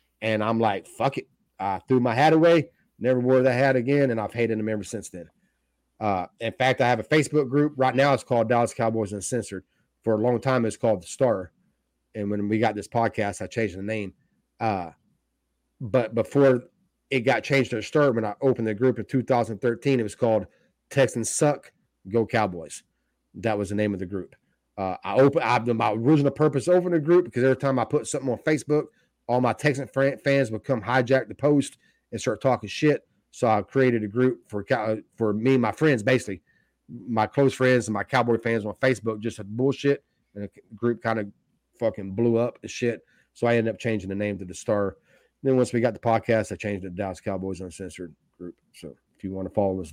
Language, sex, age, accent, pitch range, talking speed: English, male, 30-49, American, 105-135 Hz, 220 wpm